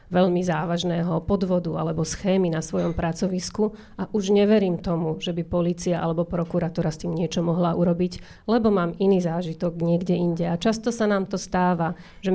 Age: 40-59